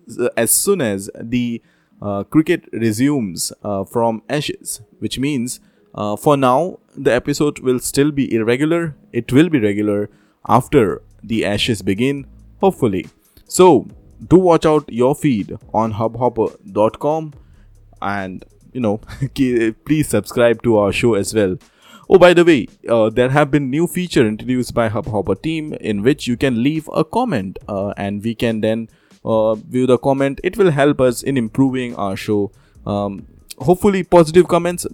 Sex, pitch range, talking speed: male, 110-150 Hz, 155 wpm